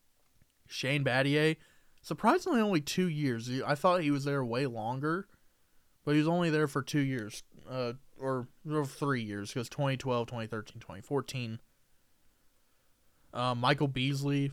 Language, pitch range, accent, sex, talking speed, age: English, 110-140 Hz, American, male, 140 wpm, 20-39